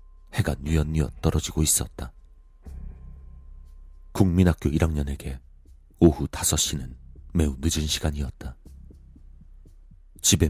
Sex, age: male, 40-59